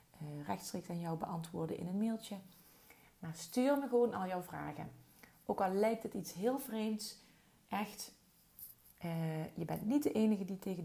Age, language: 30-49, Dutch